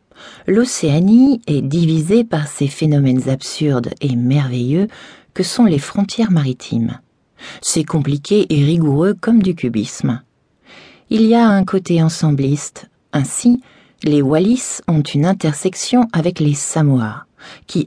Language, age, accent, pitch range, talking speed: French, 40-59, French, 135-190 Hz, 125 wpm